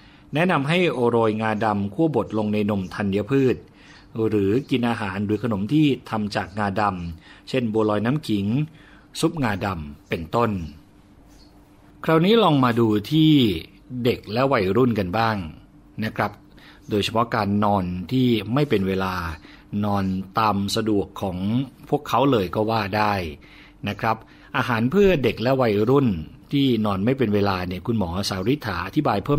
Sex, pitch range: male, 100-130 Hz